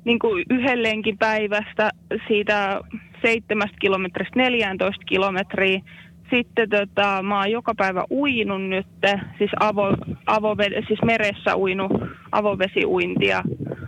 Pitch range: 190-220 Hz